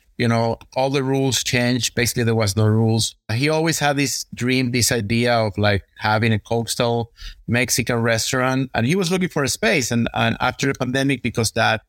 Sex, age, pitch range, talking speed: male, 30-49, 110-130 Hz, 200 wpm